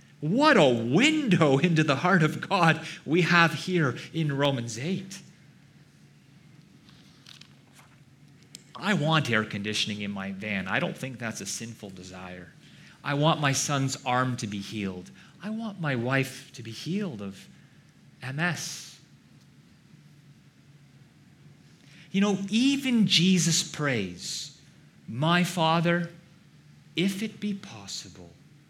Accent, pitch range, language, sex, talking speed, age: American, 110-165 Hz, English, male, 115 wpm, 30-49